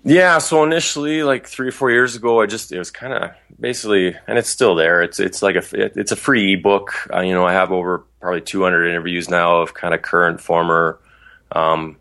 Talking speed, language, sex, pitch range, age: 225 wpm, English, male, 80-90 Hz, 20-39